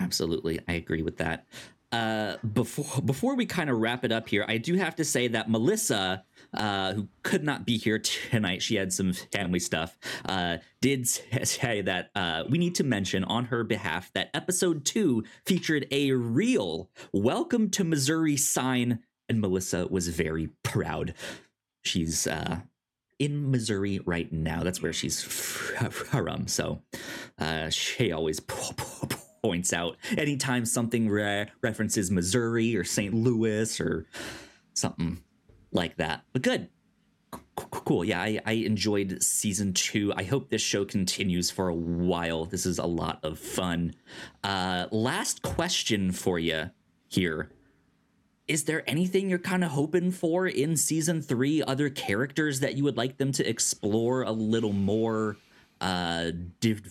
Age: 30-49